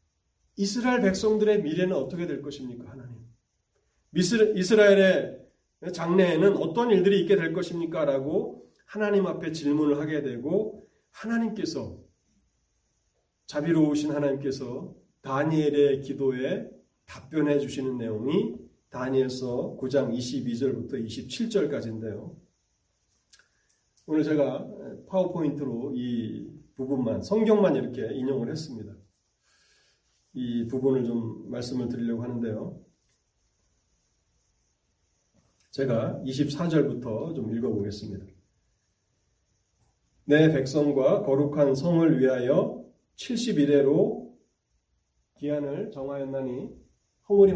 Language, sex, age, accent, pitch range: Korean, male, 40-59, native, 125-160 Hz